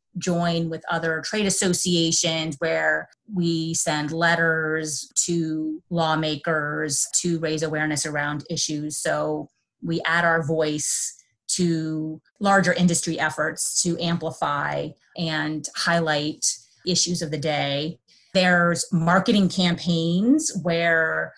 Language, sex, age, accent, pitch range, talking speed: English, female, 30-49, American, 155-170 Hz, 105 wpm